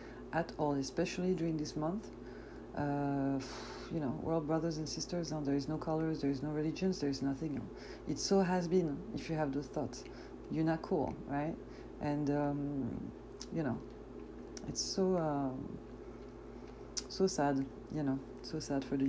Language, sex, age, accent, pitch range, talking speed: English, female, 40-59, French, 140-170 Hz, 170 wpm